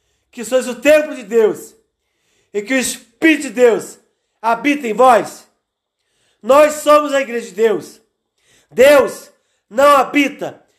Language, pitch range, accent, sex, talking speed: Portuguese, 245-290 Hz, Brazilian, male, 135 wpm